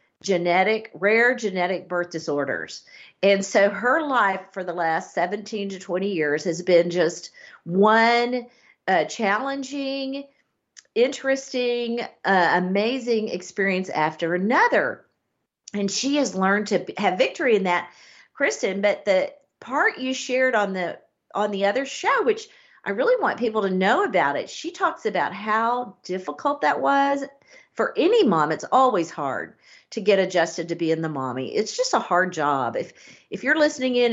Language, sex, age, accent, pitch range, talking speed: English, female, 50-69, American, 175-245 Hz, 155 wpm